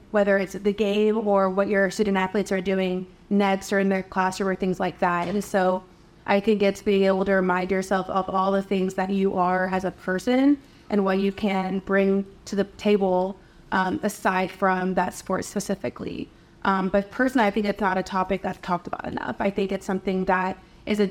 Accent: American